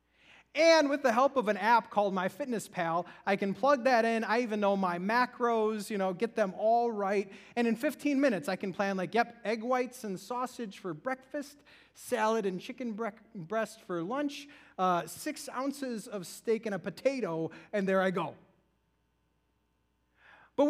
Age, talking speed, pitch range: 30-49, 170 wpm, 185-250 Hz